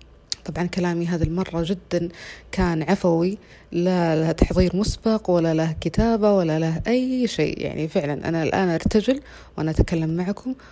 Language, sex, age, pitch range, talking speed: Arabic, female, 30-49, 155-200 Hz, 145 wpm